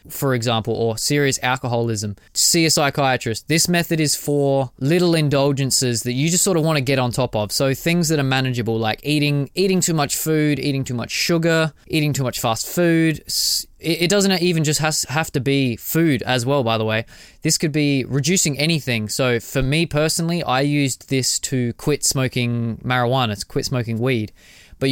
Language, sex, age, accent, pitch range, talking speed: English, male, 20-39, Australian, 115-155 Hz, 190 wpm